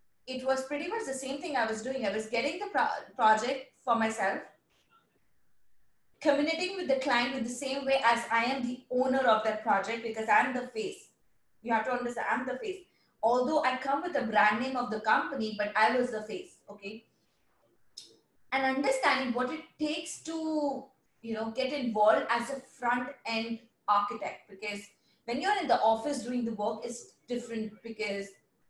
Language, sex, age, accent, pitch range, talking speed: English, female, 20-39, Indian, 225-280 Hz, 180 wpm